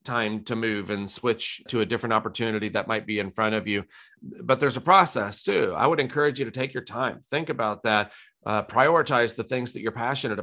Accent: American